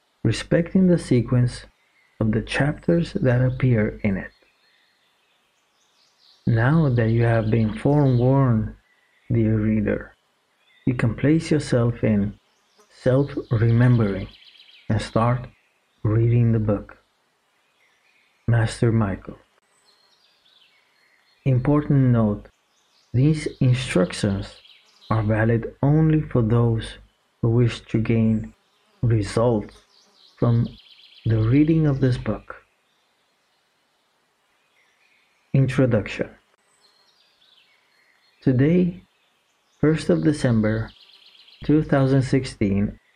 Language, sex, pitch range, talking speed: English, male, 110-135 Hz, 80 wpm